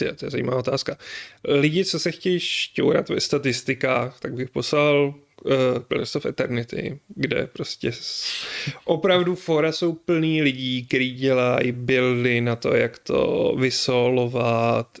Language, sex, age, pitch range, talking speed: Czech, male, 30-49, 120-140 Hz, 135 wpm